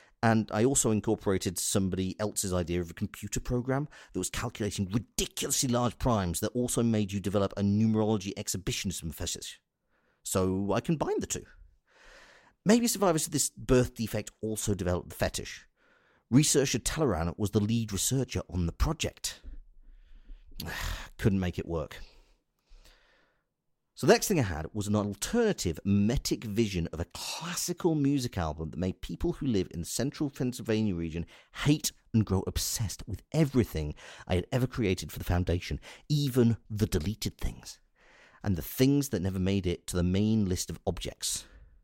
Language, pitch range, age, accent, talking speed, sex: English, 90-125 Hz, 40-59, British, 160 wpm, male